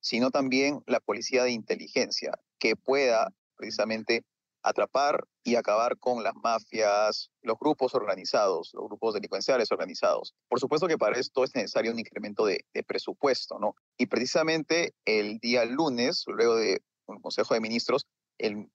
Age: 30-49